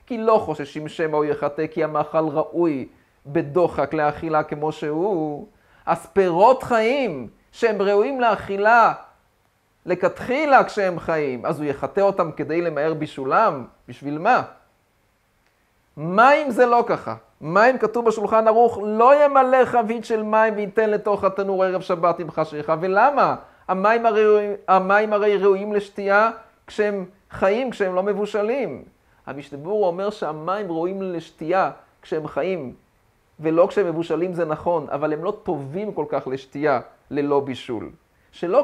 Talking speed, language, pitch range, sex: 130 wpm, Hebrew, 150-205 Hz, male